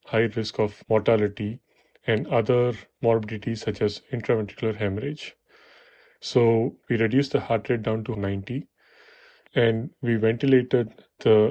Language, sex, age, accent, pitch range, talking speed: English, male, 30-49, Indian, 110-135 Hz, 125 wpm